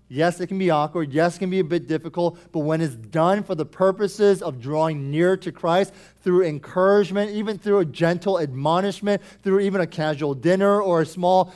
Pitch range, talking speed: 155-200 Hz, 200 wpm